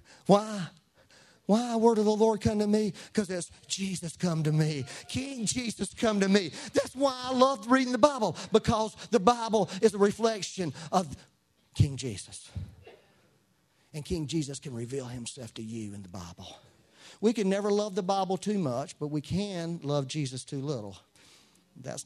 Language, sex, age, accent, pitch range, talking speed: English, male, 40-59, American, 125-200 Hz, 170 wpm